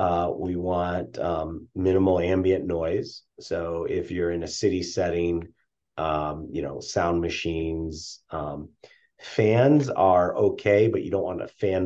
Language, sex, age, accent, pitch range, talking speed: English, male, 30-49, American, 85-100 Hz, 145 wpm